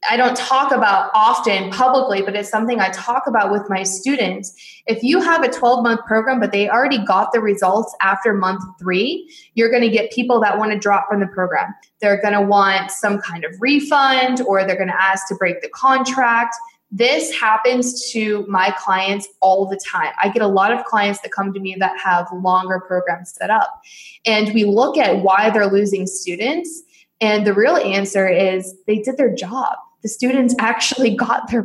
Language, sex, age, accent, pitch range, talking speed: English, female, 20-39, American, 195-245 Hz, 190 wpm